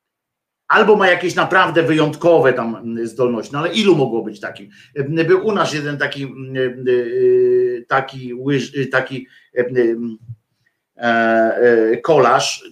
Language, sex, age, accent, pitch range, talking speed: Polish, male, 50-69, native, 130-175 Hz, 120 wpm